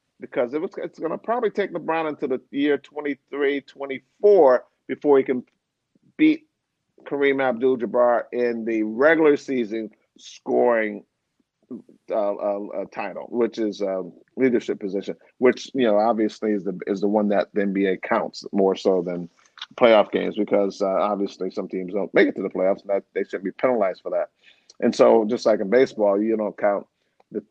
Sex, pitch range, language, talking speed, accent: male, 100-140 Hz, English, 170 wpm, American